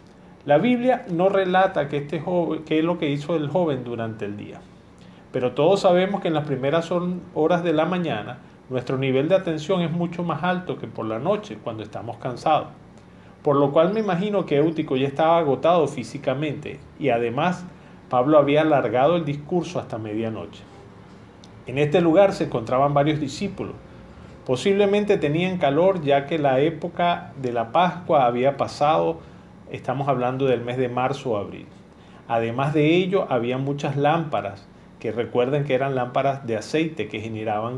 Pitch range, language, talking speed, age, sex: 125-170 Hz, Spanish, 165 wpm, 40-59, male